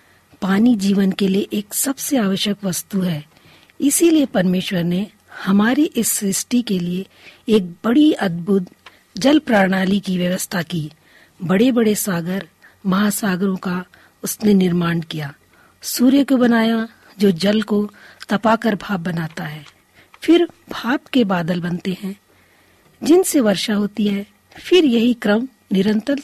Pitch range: 185-245 Hz